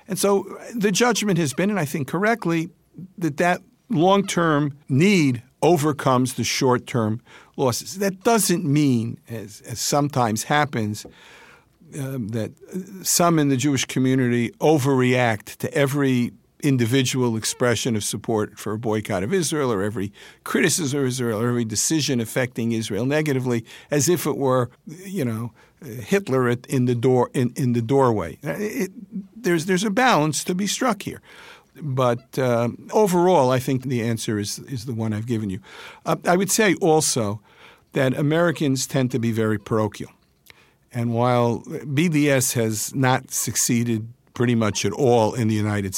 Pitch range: 115-160 Hz